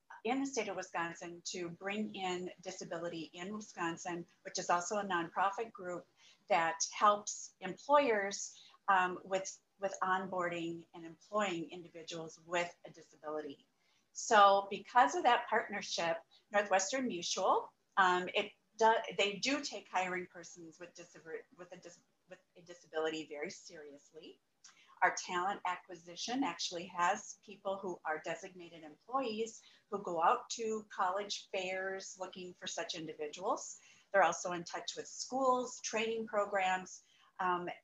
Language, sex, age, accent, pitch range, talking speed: English, female, 40-59, American, 170-205 Hz, 135 wpm